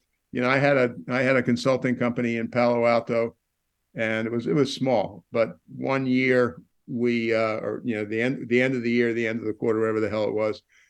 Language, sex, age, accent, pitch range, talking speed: English, male, 60-79, American, 110-135 Hz, 240 wpm